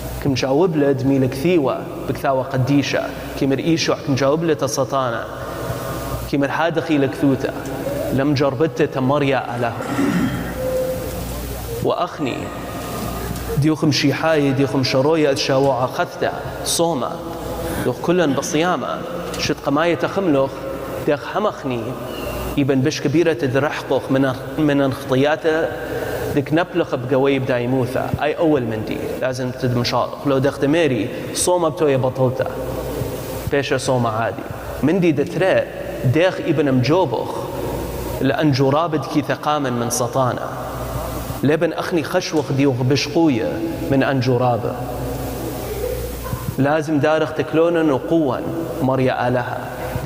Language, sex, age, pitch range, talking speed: English, male, 30-49, 130-155 Hz, 95 wpm